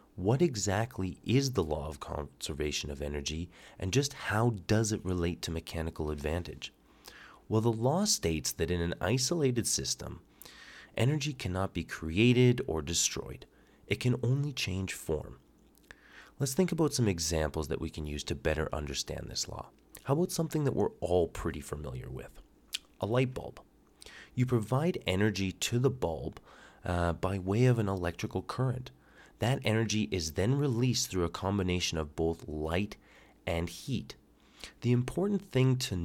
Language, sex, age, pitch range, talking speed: English, male, 30-49, 80-125 Hz, 155 wpm